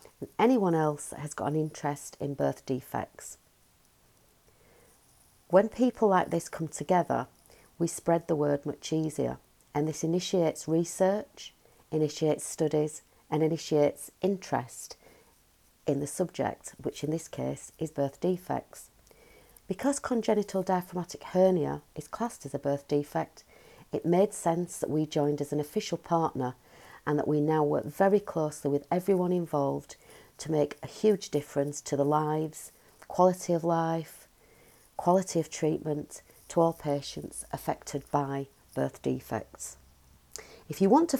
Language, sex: English, female